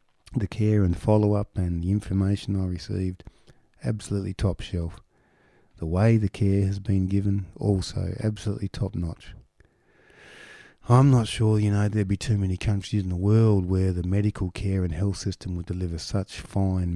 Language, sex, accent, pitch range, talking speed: English, male, Australian, 90-105 Hz, 160 wpm